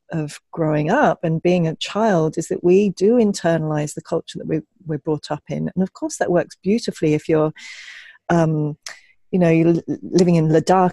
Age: 40-59